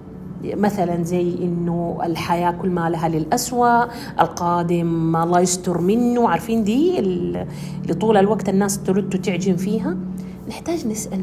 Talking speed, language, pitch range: 125 wpm, Arabic, 170-215 Hz